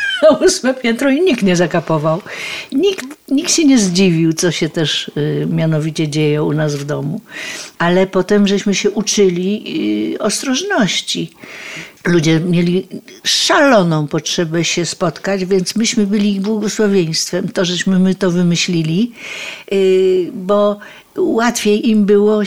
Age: 60-79